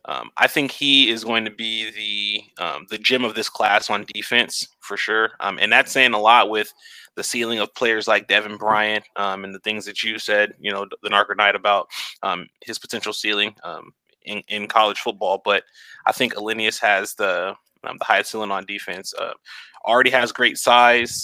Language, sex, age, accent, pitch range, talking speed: English, male, 20-39, American, 105-120 Hz, 200 wpm